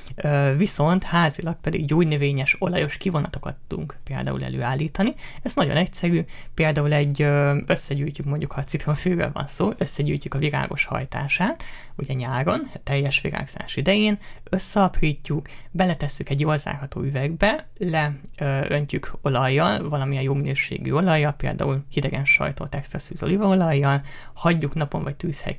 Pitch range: 140-160 Hz